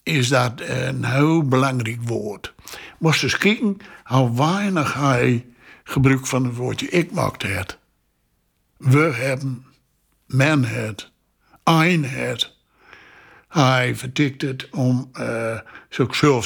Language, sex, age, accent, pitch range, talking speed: Dutch, male, 60-79, Dutch, 125-175 Hz, 110 wpm